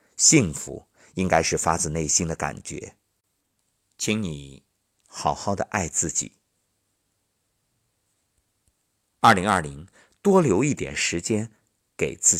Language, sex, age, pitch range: Chinese, male, 50-69, 90-115 Hz